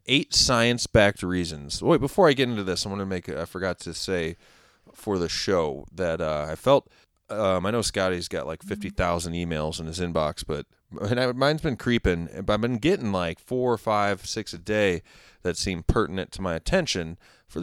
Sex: male